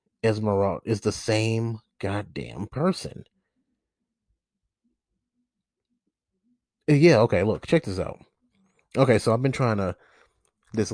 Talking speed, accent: 105 wpm, American